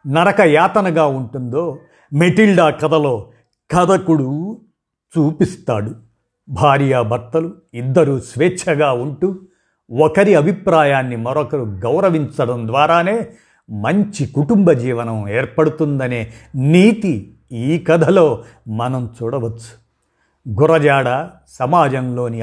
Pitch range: 125-170 Hz